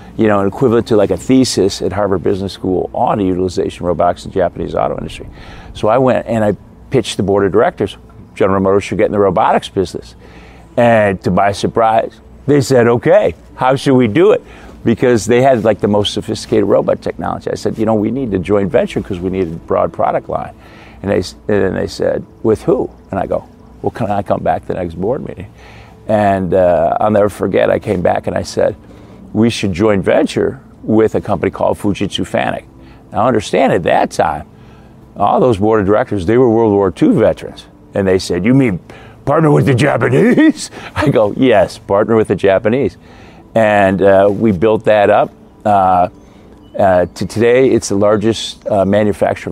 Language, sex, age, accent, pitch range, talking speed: English, male, 50-69, American, 95-110 Hz, 200 wpm